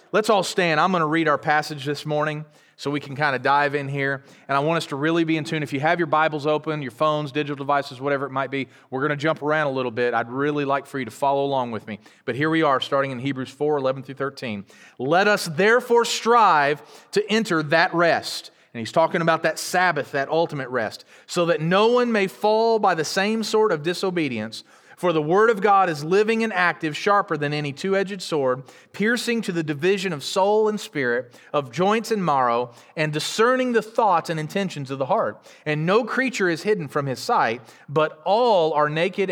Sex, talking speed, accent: male, 225 wpm, American